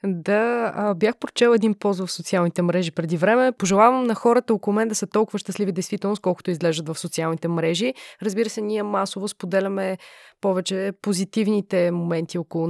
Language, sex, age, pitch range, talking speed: Bulgarian, female, 20-39, 180-225 Hz, 160 wpm